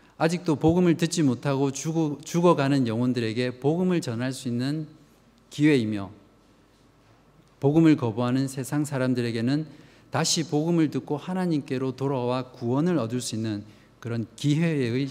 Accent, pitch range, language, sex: native, 120-150 Hz, Korean, male